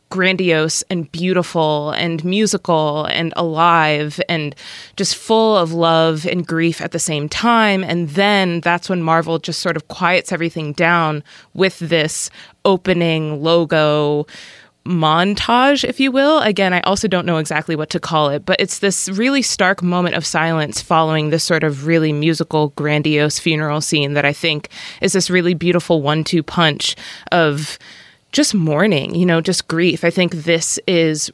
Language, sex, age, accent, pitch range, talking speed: English, female, 20-39, American, 160-190 Hz, 165 wpm